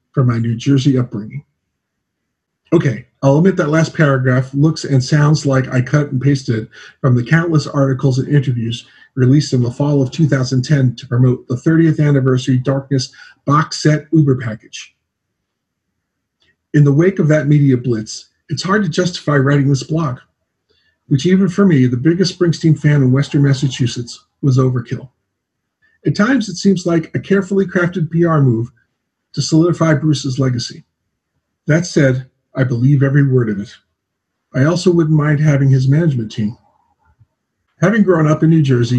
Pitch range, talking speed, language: 125-155 Hz, 160 wpm, English